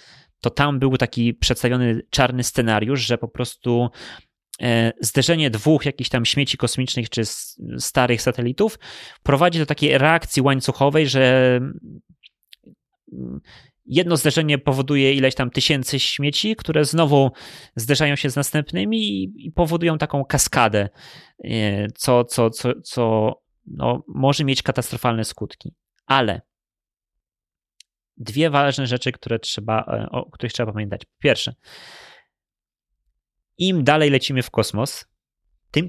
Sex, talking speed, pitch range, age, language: male, 110 wpm, 115-145 Hz, 20-39, Polish